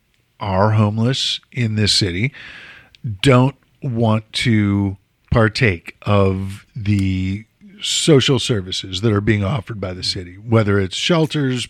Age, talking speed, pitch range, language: 50-69, 120 wpm, 110-150 Hz, English